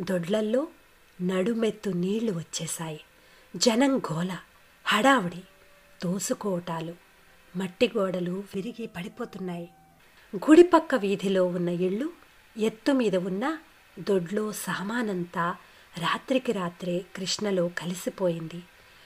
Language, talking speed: Telugu, 70 wpm